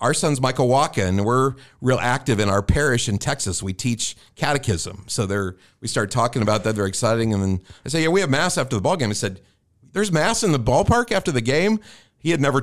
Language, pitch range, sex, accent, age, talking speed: English, 100-125 Hz, male, American, 50-69, 240 wpm